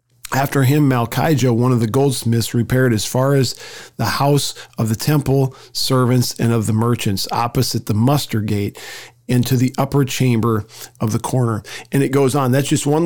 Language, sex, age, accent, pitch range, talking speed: English, male, 40-59, American, 115-140 Hz, 180 wpm